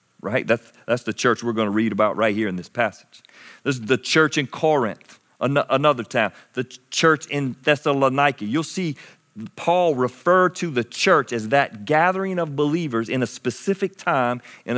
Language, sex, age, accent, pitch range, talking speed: English, male, 40-59, American, 130-175 Hz, 180 wpm